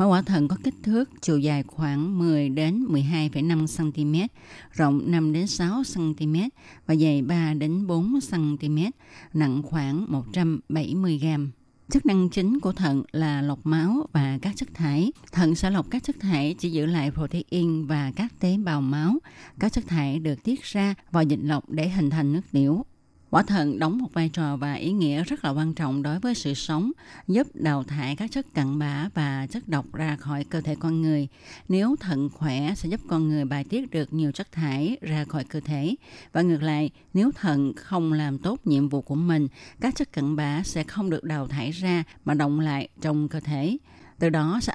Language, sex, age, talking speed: Vietnamese, female, 20-39, 200 wpm